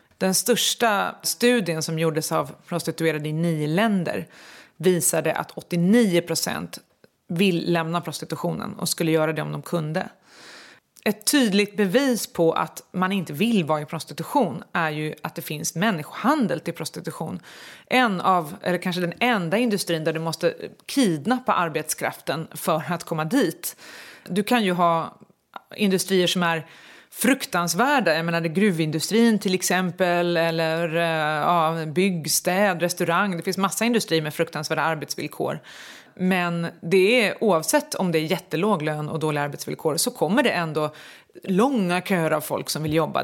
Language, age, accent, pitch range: English, 30-49, Swedish, 160-200 Hz